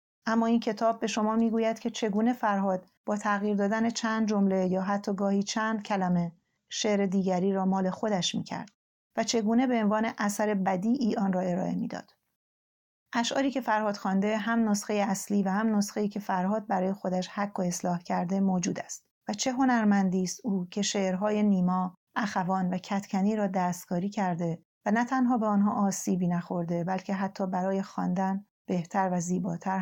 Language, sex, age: Persian, female, 40-59